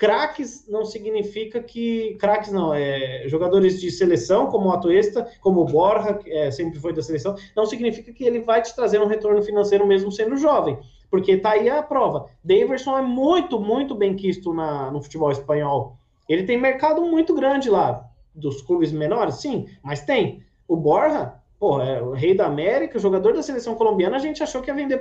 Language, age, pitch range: Portuguese, 20-39, 175-255 Hz